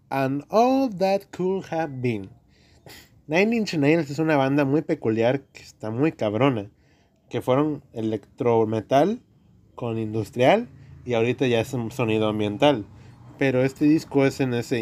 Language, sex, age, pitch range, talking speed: Spanish, male, 20-39, 115-150 Hz, 145 wpm